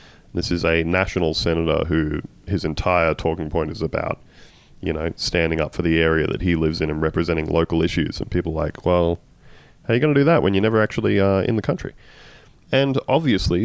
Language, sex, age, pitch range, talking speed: English, male, 30-49, 80-95 Hz, 215 wpm